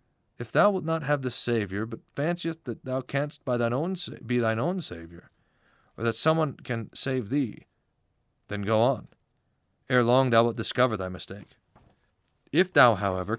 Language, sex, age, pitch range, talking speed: English, male, 40-59, 115-145 Hz, 175 wpm